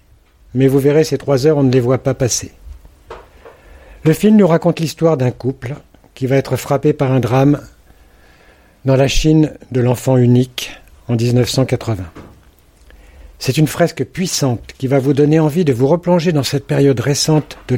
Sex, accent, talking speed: male, French, 170 wpm